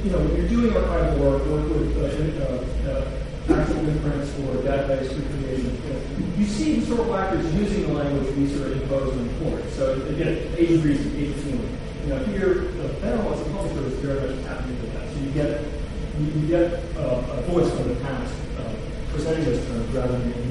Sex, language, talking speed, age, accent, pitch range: male, English, 230 wpm, 30-49, American, 130-160 Hz